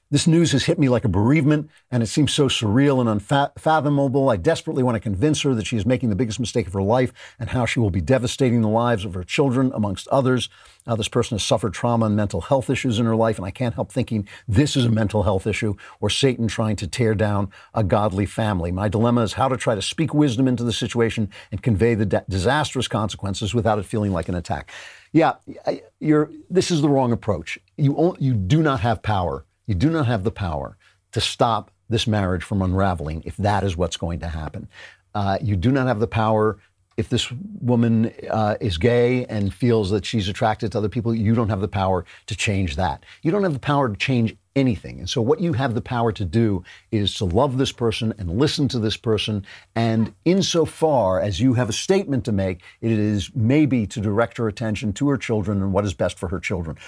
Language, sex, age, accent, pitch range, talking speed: English, male, 50-69, American, 105-130 Hz, 225 wpm